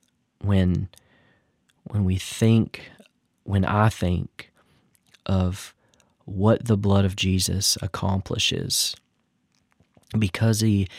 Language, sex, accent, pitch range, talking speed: English, male, American, 95-110 Hz, 85 wpm